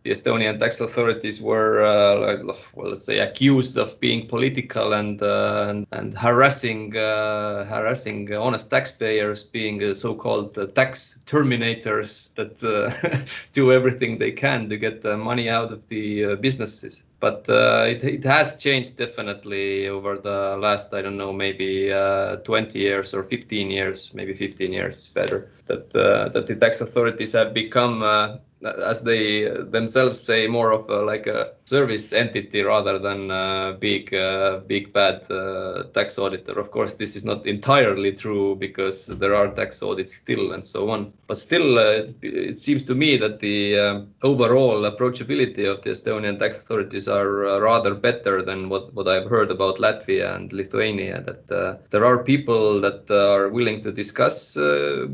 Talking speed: 170 wpm